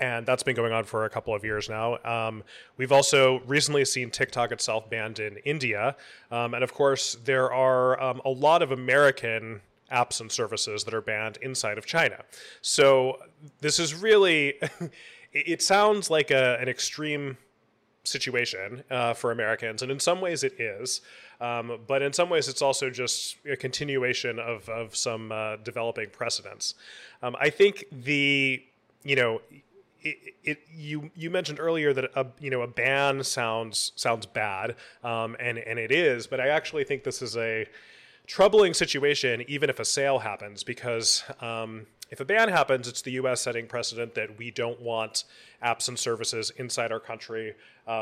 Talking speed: 175 wpm